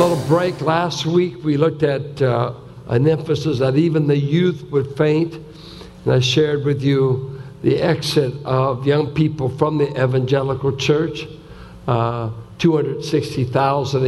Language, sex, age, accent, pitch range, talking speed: English, male, 60-79, American, 130-155 Hz, 135 wpm